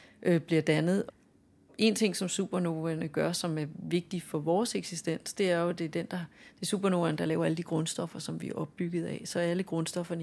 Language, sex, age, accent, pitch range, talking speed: Danish, female, 30-49, native, 165-195 Hz, 210 wpm